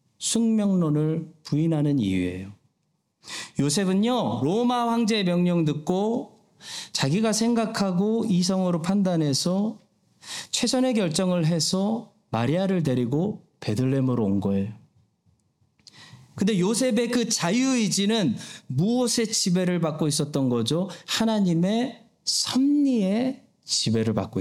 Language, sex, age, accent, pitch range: Korean, male, 40-59, native, 125-205 Hz